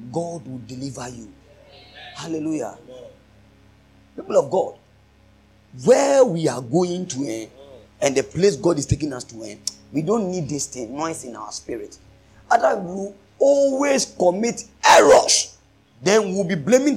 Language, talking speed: English, 140 wpm